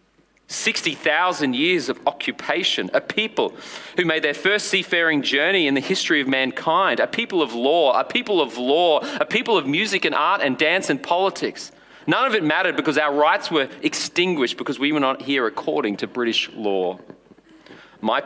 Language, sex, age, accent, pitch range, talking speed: English, male, 40-59, Australian, 105-145 Hz, 180 wpm